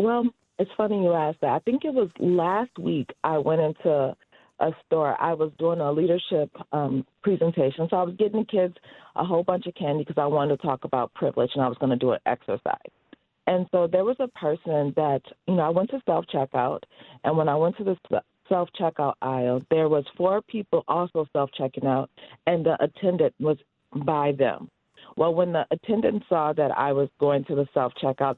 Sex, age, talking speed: female, 40-59, 205 wpm